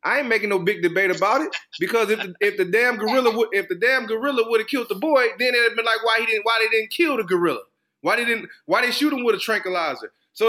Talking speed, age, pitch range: 290 wpm, 20-39, 210-280 Hz